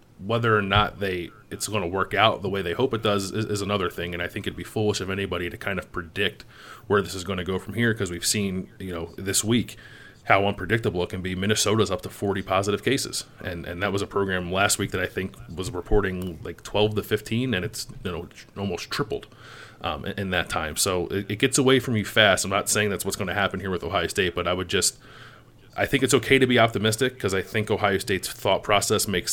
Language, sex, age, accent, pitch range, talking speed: English, male, 30-49, American, 90-110 Hz, 250 wpm